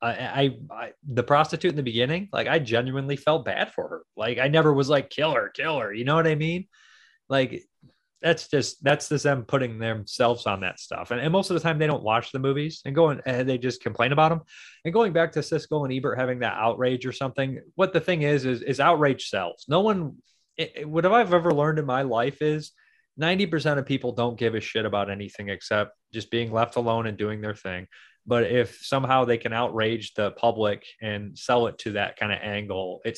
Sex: male